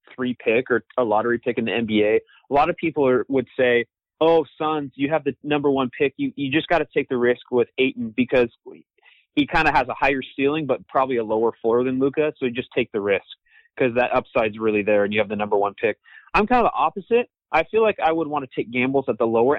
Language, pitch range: English, 125-160 Hz